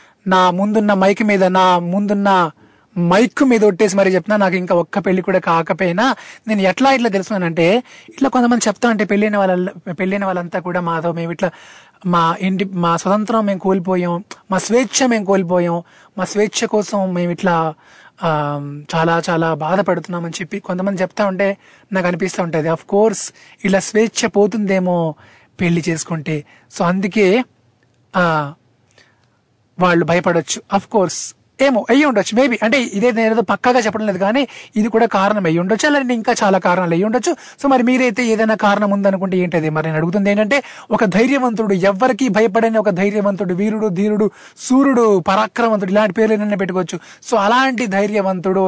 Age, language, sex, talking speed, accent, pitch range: 20-39, Telugu, male, 150 wpm, native, 180-220 Hz